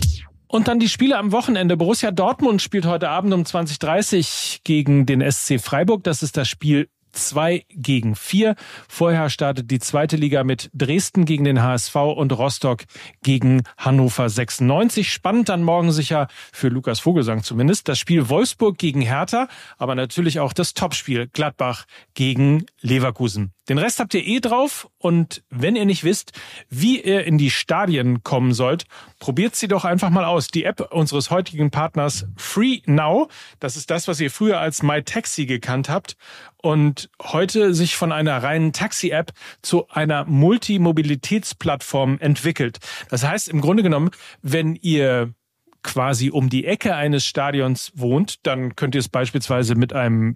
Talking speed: 160 wpm